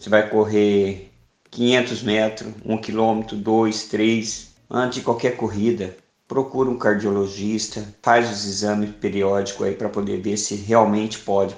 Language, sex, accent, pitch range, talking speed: Portuguese, male, Brazilian, 105-120 Hz, 140 wpm